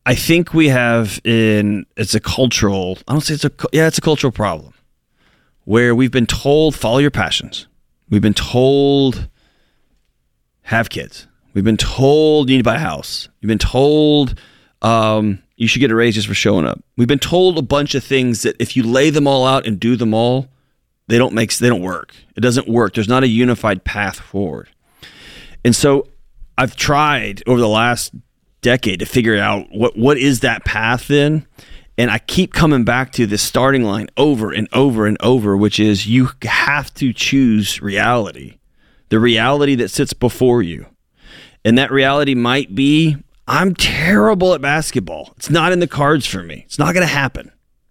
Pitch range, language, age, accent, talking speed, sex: 110-145 Hz, English, 30-49, American, 190 wpm, male